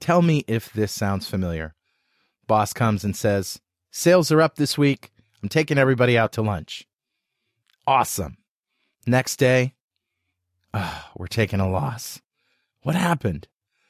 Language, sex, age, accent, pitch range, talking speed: English, male, 30-49, American, 110-150 Hz, 130 wpm